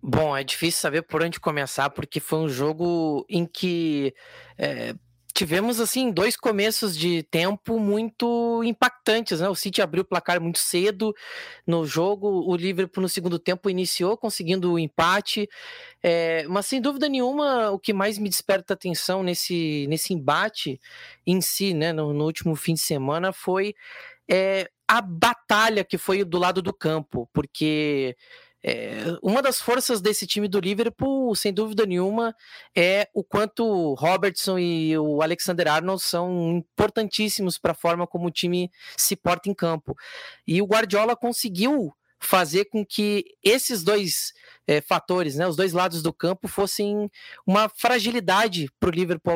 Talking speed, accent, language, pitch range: 155 wpm, Brazilian, Portuguese, 170-215 Hz